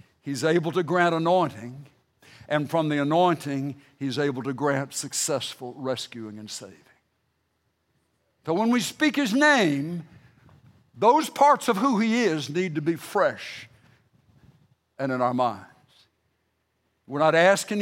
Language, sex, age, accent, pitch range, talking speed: English, male, 60-79, American, 125-165 Hz, 135 wpm